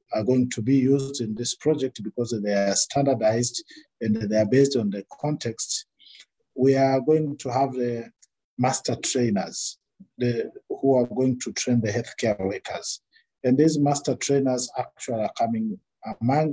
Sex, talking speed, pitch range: male, 155 wpm, 115-145 Hz